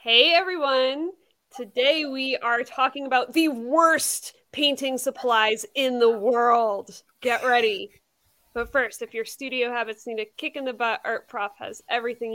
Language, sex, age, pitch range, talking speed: English, female, 20-39, 230-305 Hz, 150 wpm